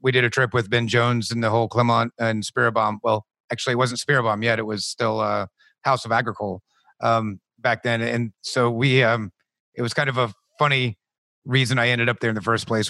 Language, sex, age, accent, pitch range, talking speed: English, male, 30-49, American, 115-135 Hz, 230 wpm